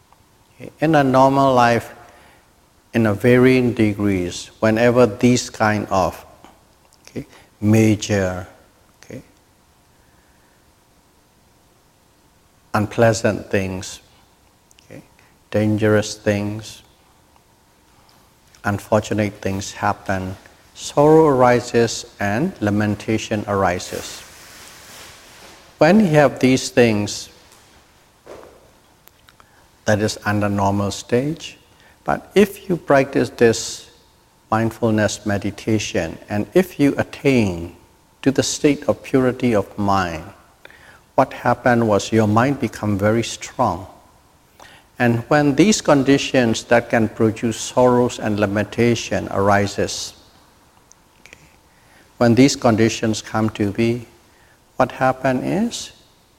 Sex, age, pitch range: male, 60-79, 100-125 Hz